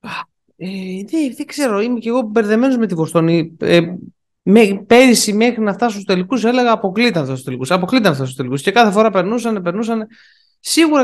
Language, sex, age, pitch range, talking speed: Greek, male, 20-39, 140-220 Hz, 165 wpm